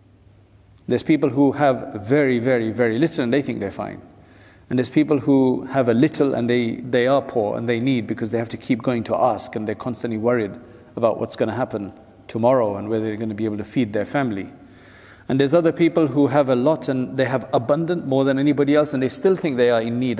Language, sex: English, male